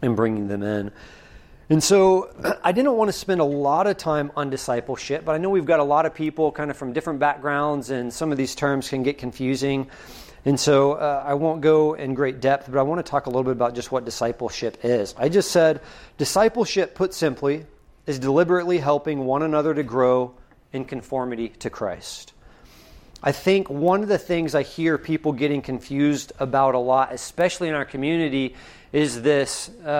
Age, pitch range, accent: 40-59, 130-160 Hz, American